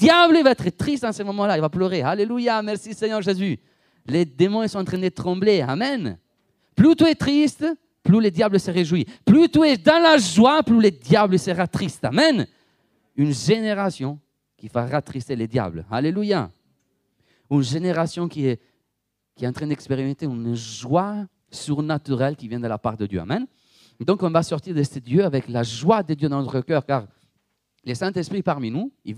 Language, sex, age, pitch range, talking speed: French, male, 40-59, 115-190 Hz, 195 wpm